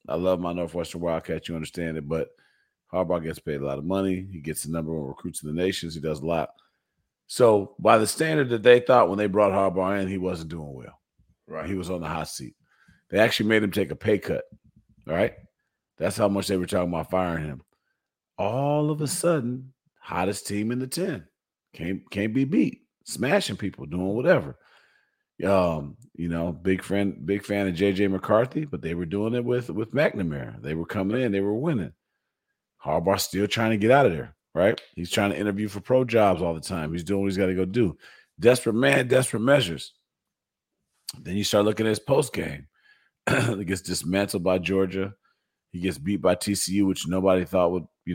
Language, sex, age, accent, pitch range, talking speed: English, male, 40-59, American, 85-110 Hz, 210 wpm